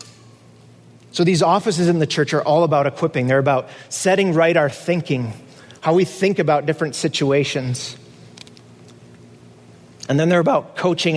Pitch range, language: 115-160 Hz, English